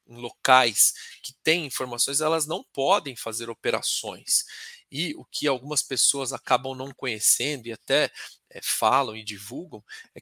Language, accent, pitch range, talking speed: Portuguese, Brazilian, 125-175 Hz, 140 wpm